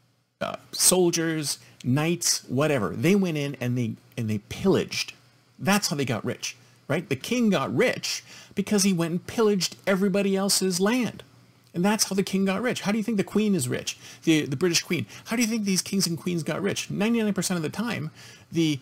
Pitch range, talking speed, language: 125-185 Hz, 205 wpm, English